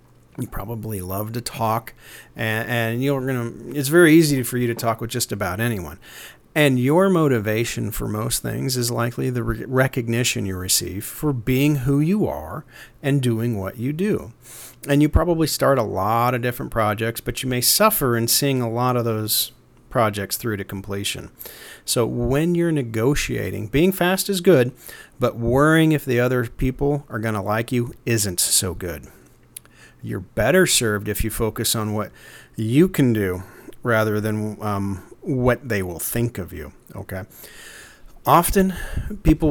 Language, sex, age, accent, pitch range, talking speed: English, male, 40-59, American, 110-140 Hz, 170 wpm